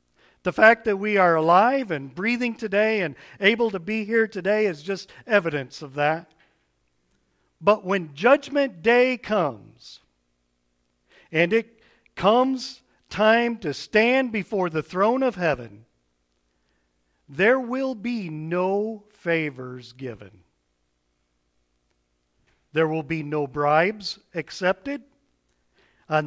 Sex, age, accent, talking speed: male, 50-69, American, 110 wpm